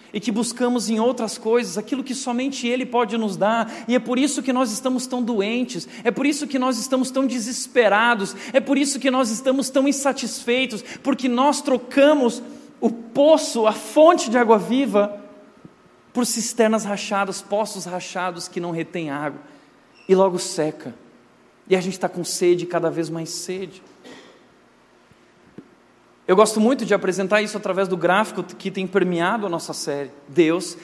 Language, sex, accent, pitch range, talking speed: Portuguese, male, Brazilian, 185-250 Hz, 165 wpm